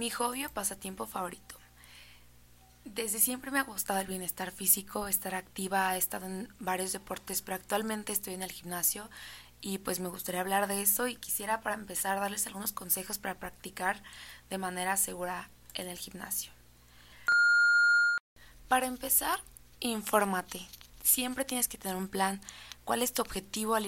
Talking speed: 155 wpm